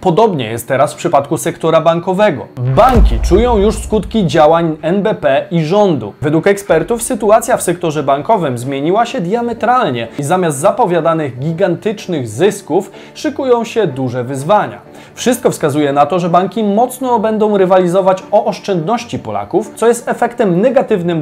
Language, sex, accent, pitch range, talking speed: Polish, male, native, 145-210 Hz, 140 wpm